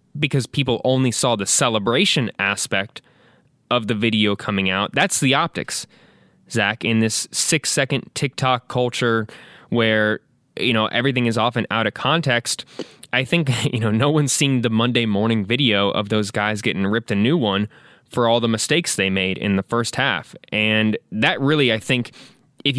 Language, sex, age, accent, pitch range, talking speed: English, male, 20-39, American, 110-135 Hz, 175 wpm